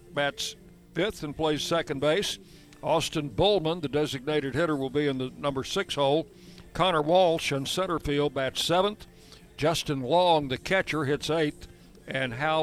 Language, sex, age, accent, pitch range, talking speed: English, male, 60-79, American, 145-175 Hz, 155 wpm